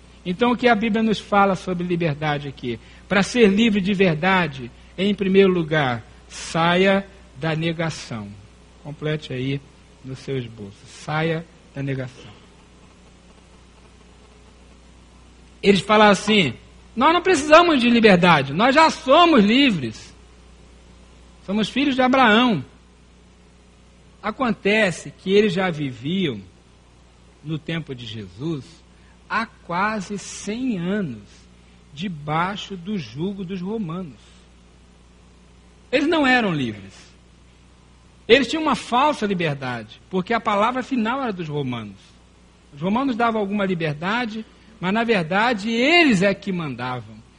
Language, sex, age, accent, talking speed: Portuguese, male, 60-79, Brazilian, 115 wpm